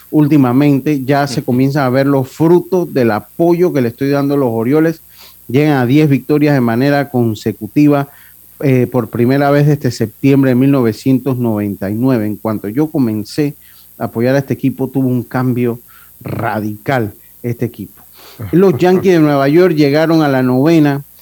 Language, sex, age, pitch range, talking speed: Spanish, male, 40-59, 115-145 Hz, 160 wpm